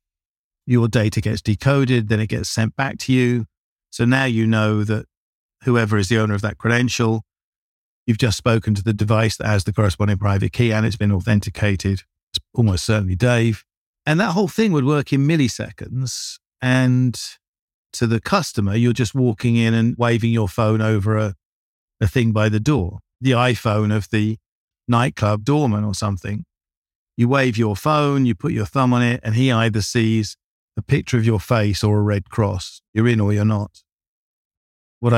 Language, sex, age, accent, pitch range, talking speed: English, male, 50-69, British, 105-120 Hz, 185 wpm